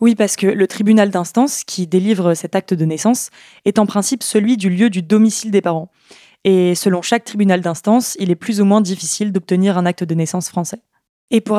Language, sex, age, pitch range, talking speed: French, female, 20-39, 185-225 Hz, 210 wpm